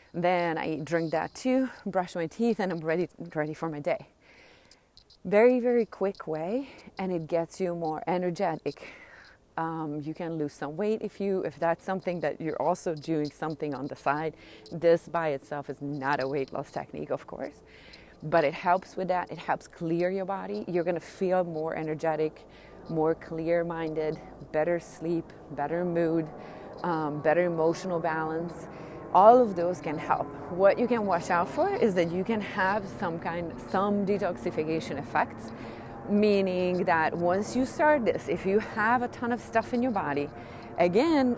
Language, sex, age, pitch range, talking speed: English, female, 30-49, 160-200 Hz, 175 wpm